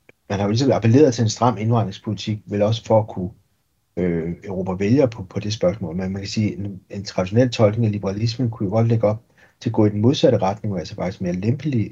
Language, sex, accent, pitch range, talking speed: Danish, male, native, 95-115 Hz, 245 wpm